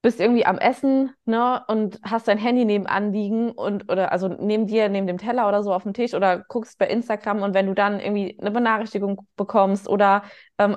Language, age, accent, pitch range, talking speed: German, 20-39, German, 200-230 Hz, 210 wpm